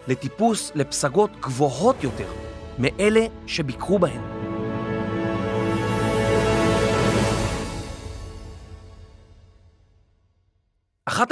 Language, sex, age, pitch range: Hebrew, male, 40-59, 115-185 Hz